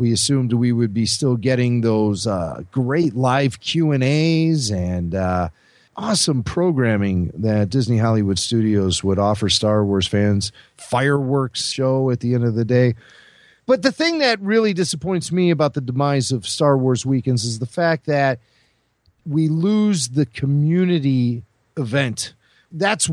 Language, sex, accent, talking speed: English, male, American, 150 wpm